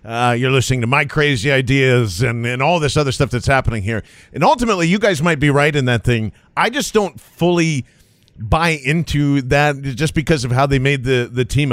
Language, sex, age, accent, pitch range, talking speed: English, male, 40-59, American, 130-150 Hz, 215 wpm